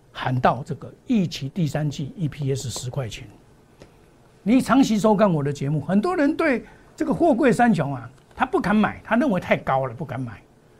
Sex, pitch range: male, 140-225 Hz